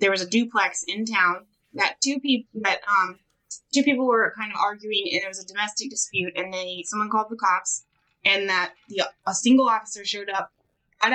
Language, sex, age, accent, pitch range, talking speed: English, female, 20-39, American, 185-230 Hz, 205 wpm